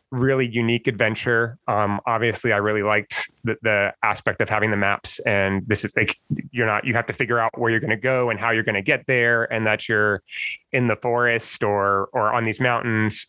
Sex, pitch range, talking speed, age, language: male, 105-125 Hz, 220 wpm, 20-39, English